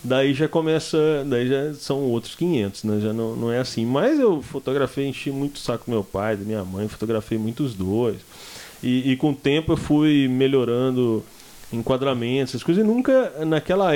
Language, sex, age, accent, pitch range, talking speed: Portuguese, male, 20-39, Brazilian, 120-155 Hz, 185 wpm